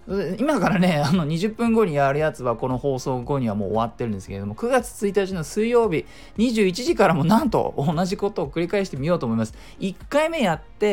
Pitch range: 120-195 Hz